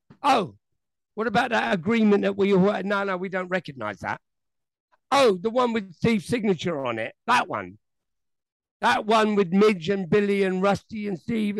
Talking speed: 170 wpm